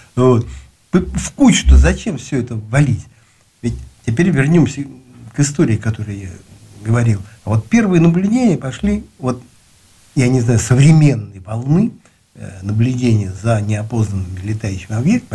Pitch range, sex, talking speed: 110-165 Hz, male, 120 wpm